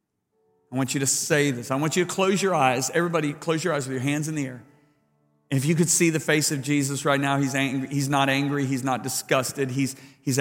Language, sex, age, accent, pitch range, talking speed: English, male, 40-59, American, 130-155 Hz, 250 wpm